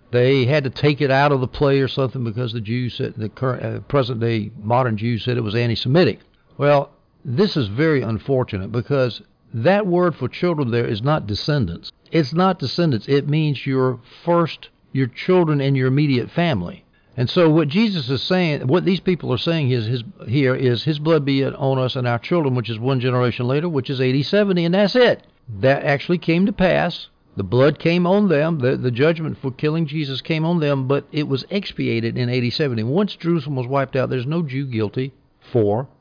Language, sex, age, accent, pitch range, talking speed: English, male, 60-79, American, 125-160 Hz, 205 wpm